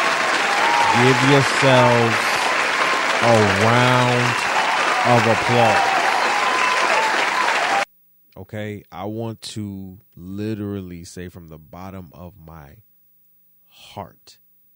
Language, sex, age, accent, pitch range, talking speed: English, male, 30-49, American, 90-105 Hz, 75 wpm